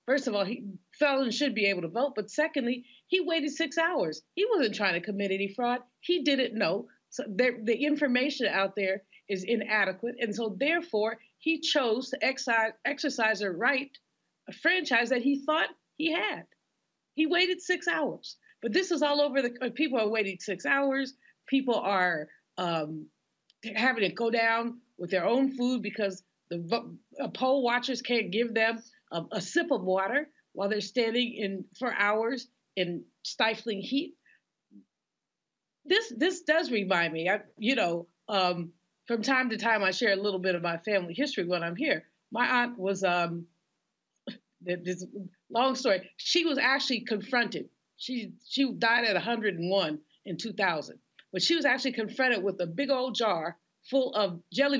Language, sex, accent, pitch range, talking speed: English, female, American, 200-270 Hz, 170 wpm